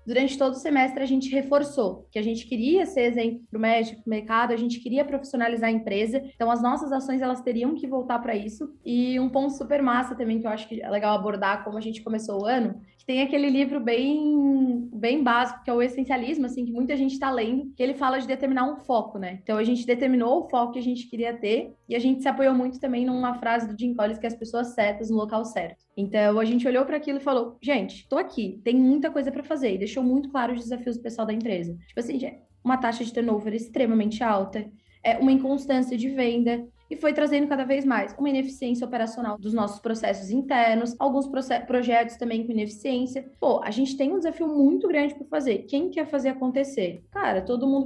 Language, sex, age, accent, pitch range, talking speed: Portuguese, female, 20-39, Brazilian, 230-270 Hz, 230 wpm